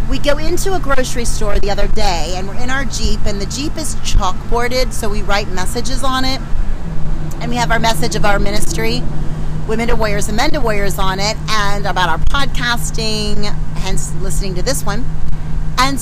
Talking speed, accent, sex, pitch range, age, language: 195 wpm, American, female, 155-230 Hz, 30-49, English